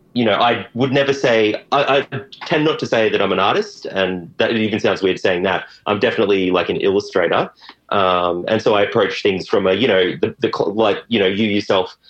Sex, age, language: male, 30-49, English